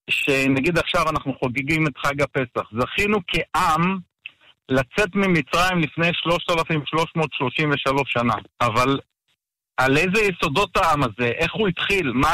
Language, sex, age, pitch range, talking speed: Hebrew, male, 50-69, 130-170 Hz, 115 wpm